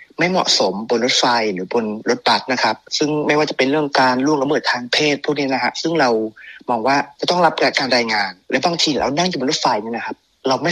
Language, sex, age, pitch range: Thai, male, 30-49, 125-160 Hz